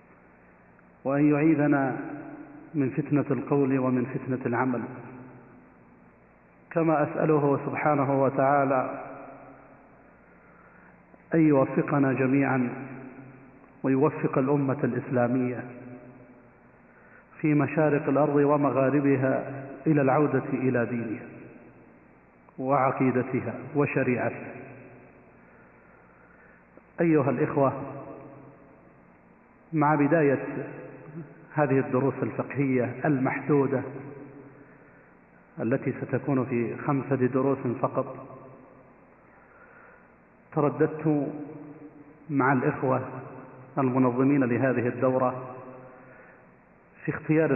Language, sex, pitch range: Arabic, male, 125-145 Hz